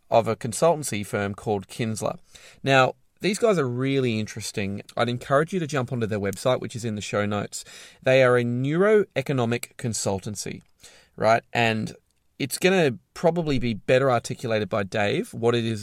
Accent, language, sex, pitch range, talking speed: Australian, English, male, 105-130 Hz, 170 wpm